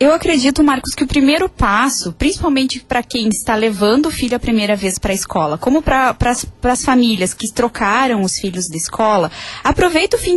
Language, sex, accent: Portuguese, female, Brazilian